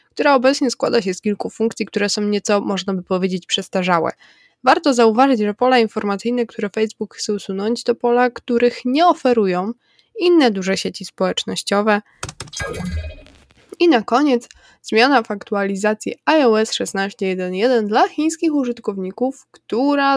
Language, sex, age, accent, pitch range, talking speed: Polish, female, 20-39, native, 195-250 Hz, 130 wpm